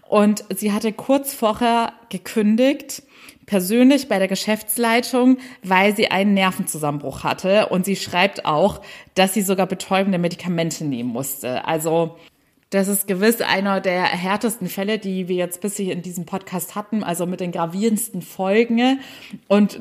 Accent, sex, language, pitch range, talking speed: German, female, German, 190-245 Hz, 145 wpm